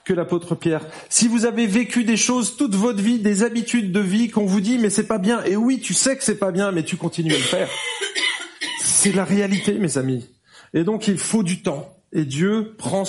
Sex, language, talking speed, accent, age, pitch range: male, French, 235 wpm, French, 40-59, 170-225 Hz